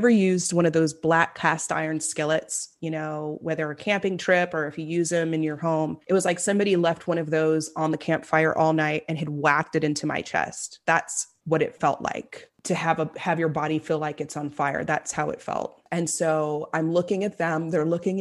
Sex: female